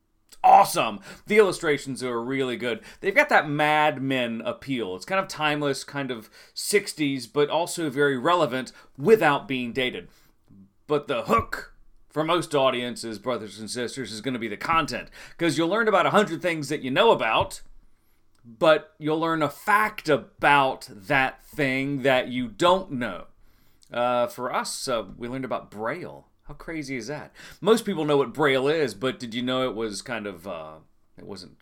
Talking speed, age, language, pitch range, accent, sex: 175 wpm, 30-49, English, 125-155 Hz, American, male